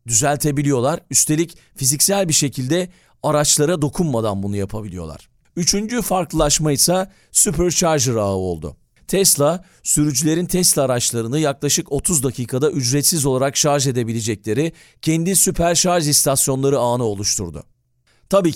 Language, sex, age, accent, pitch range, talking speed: Turkish, male, 40-59, native, 125-165 Hz, 105 wpm